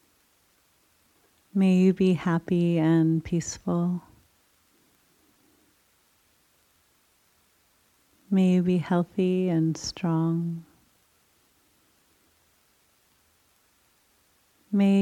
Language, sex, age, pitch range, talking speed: Swahili, female, 30-49, 165-200 Hz, 50 wpm